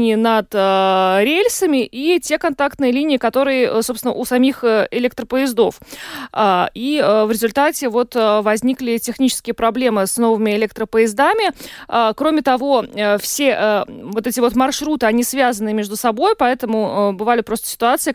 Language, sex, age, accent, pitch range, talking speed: Russian, female, 20-39, native, 215-260 Hz, 120 wpm